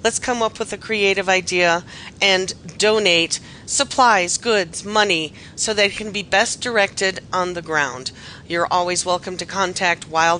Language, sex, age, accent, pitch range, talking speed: English, female, 40-59, American, 185-235 Hz, 155 wpm